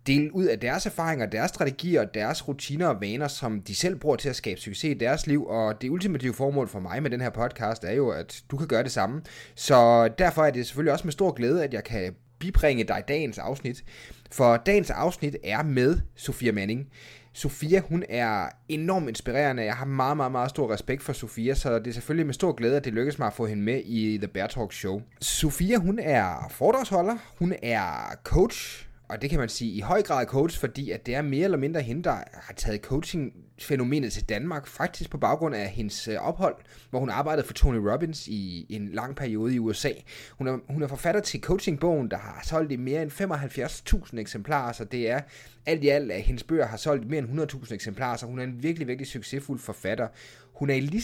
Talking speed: 220 wpm